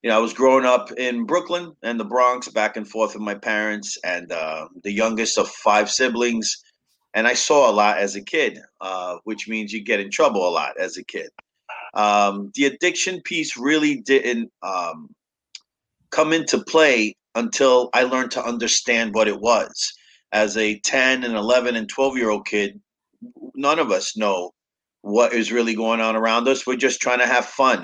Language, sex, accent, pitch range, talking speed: English, male, American, 105-135 Hz, 190 wpm